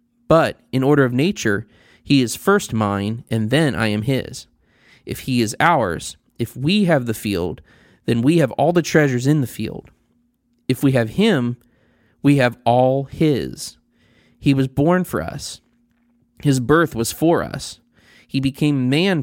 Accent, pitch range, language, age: American, 115-150 Hz, English, 30-49